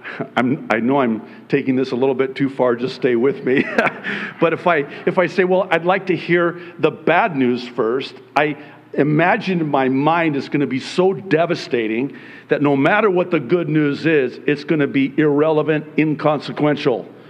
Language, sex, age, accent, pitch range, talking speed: English, male, 50-69, American, 140-190 Hz, 185 wpm